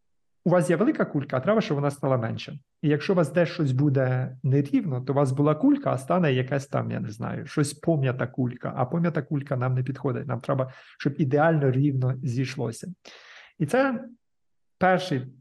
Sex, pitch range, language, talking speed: male, 130-160 Hz, Ukrainian, 190 wpm